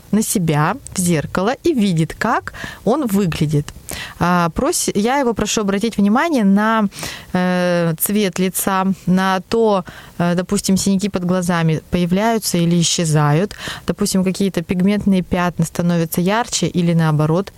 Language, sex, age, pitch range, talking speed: Russian, female, 20-39, 175-225 Hz, 115 wpm